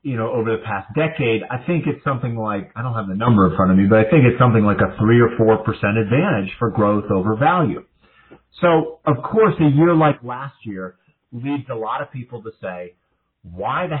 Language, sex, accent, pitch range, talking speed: English, male, American, 110-145 Hz, 225 wpm